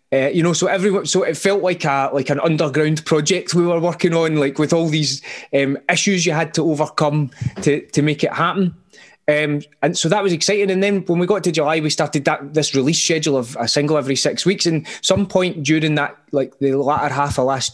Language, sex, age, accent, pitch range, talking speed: English, male, 20-39, British, 145-180 Hz, 235 wpm